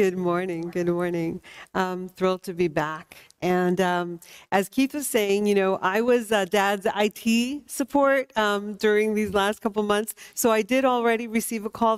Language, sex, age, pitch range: English, female, 50-69, 180-215 Hz